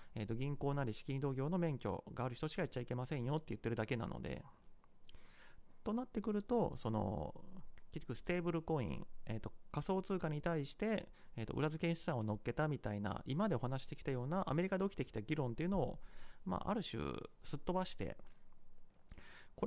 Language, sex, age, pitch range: Japanese, male, 30-49, 120-180 Hz